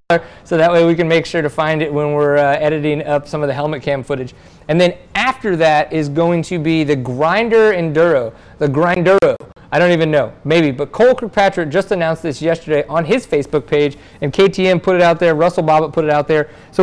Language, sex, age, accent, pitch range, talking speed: English, male, 30-49, American, 150-180 Hz, 225 wpm